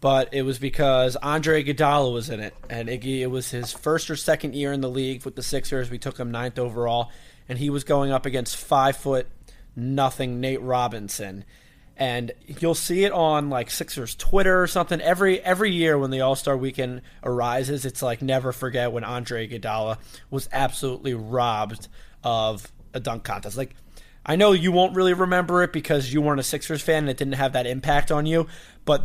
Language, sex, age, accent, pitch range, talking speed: English, male, 20-39, American, 130-155 Hz, 190 wpm